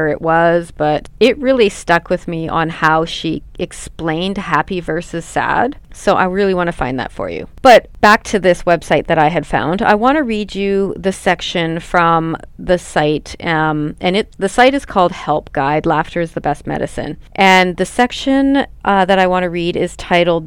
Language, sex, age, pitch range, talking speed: English, female, 30-49, 160-195 Hz, 200 wpm